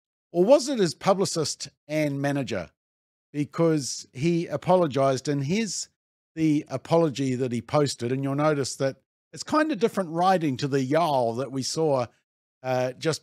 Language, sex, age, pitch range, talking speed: English, male, 50-69, 125-165 Hz, 155 wpm